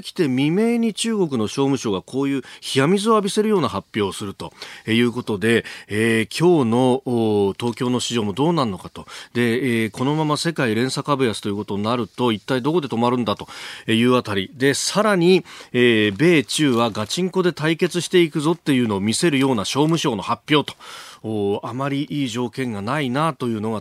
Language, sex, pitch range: Japanese, male, 110-170 Hz